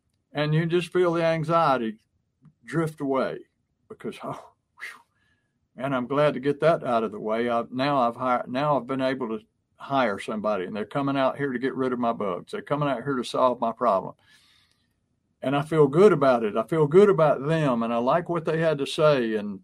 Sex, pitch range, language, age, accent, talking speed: male, 120-155 Hz, English, 60-79, American, 215 wpm